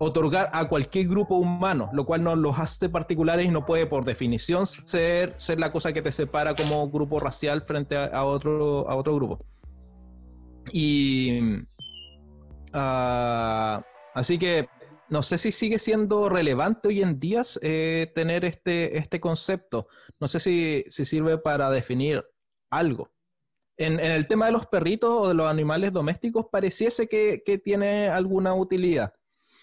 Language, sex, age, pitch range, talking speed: Spanish, male, 30-49, 130-165 Hz, 155 wpm